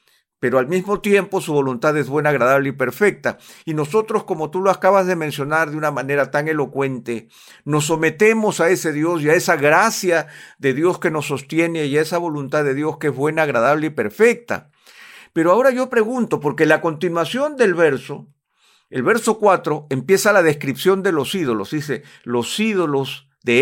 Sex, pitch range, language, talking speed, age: male, 140-185 Hz, Spanish, 185 wpm, 50-69